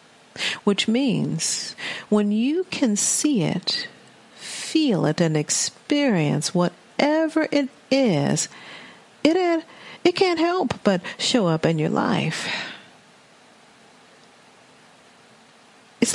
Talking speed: 95 wpm